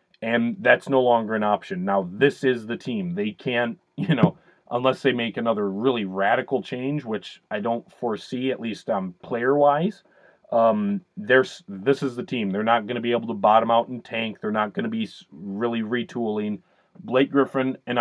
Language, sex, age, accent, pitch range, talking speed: English, male, 30-49, American, 115-145 Hz, 190 wpm